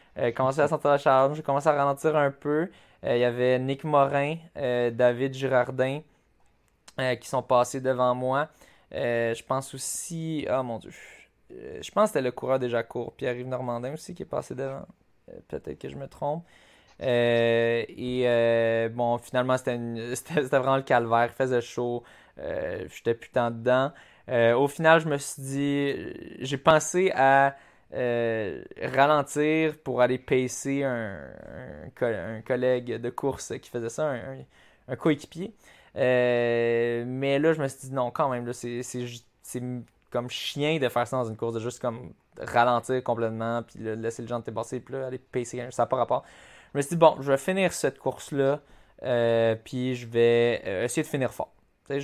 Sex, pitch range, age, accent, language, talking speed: male, 120-140 Hz, 20-39, Canadian, French, 190 wpm